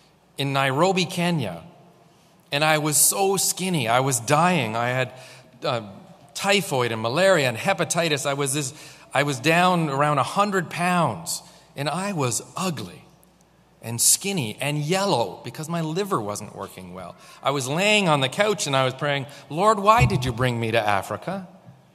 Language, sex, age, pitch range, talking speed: English, male, 40-59, 135-180 Hz, 165 wpm